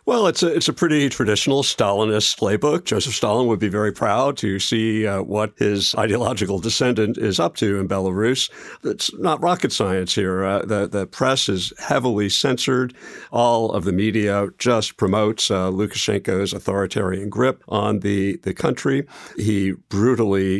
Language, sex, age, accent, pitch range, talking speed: English, male, 50-69, American, 100-125 Hz, 155 wpm